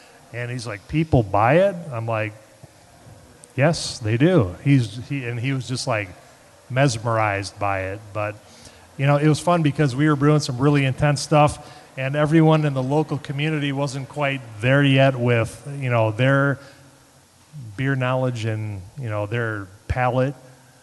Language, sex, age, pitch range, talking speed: English, male, 30-49, 110-140 Hz, 160 wpm